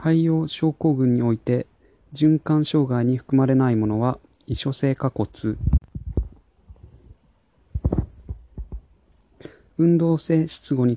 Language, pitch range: Japanese, 115-145 Hz